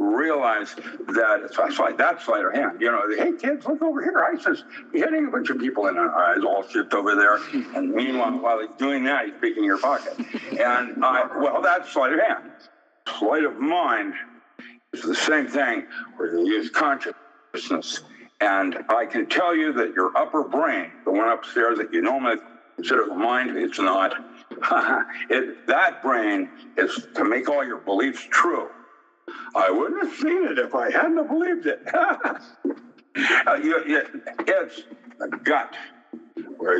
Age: 60-79